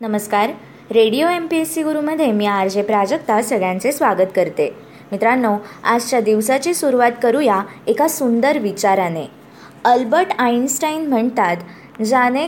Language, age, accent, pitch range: Marathi, 20-39, native, 205-270 Hz